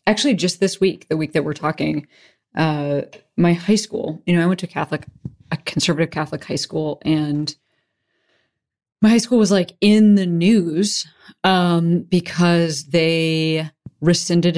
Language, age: English, 30-49